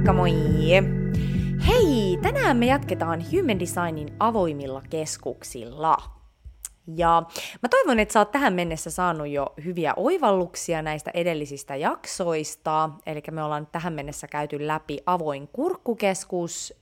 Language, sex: Finnish, female